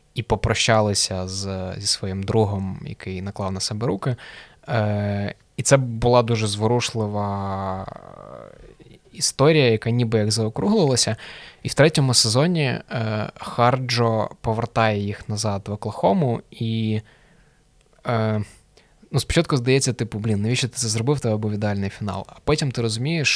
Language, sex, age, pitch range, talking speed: Ukrainian, male, 20-39, 100-120 Hz, 120 wpm